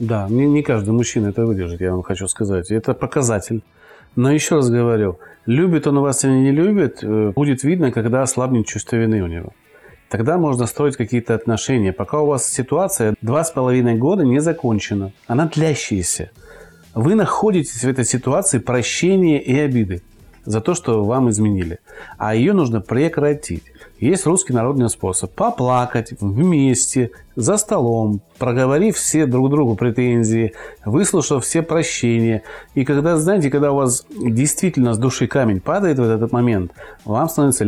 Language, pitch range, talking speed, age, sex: Russian, 110-145 Hz, 155 wpm, 30-49, male